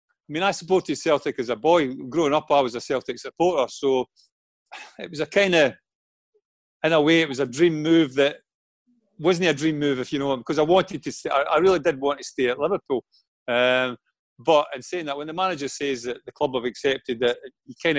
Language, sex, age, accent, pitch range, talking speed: English, male, 40-59, British, 125-155 Hz, 225 wpm